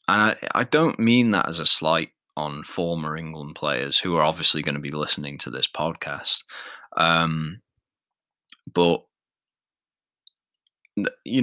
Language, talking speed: English, 135 wpm